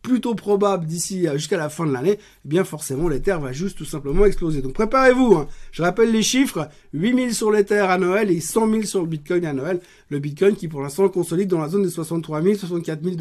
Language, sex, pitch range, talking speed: French, male, 175-220 Hz, 225 wpm